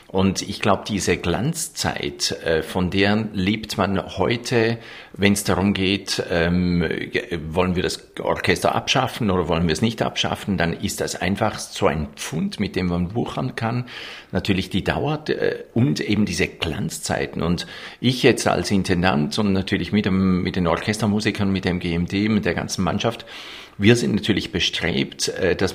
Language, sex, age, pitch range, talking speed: German, male, 50-69, 85-100 Hz, 160 wpm